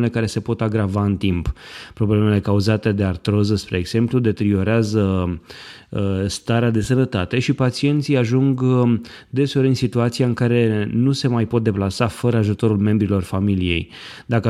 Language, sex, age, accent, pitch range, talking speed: Romanian, male, 20-39, native, 105-120 Hz, 140 wpm